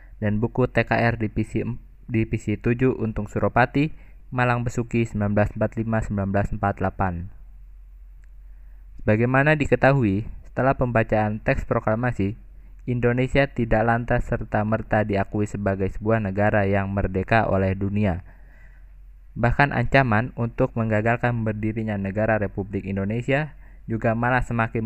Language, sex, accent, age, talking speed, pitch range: Indonesian, male, native, 20-39, 105 wpm, 100-120 Hz